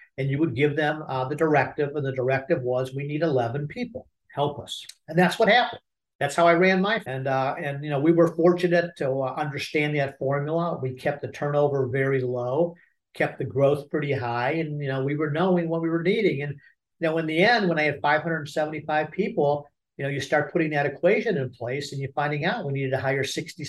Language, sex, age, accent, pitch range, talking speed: English, male, 50-69, American, 130-160 Hz, 230 wpm